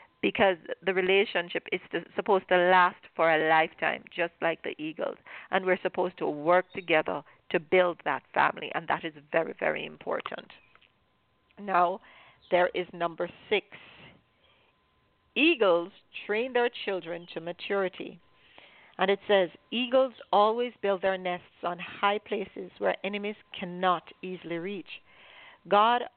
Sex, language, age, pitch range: female, English, 50-69, 175-205 Hz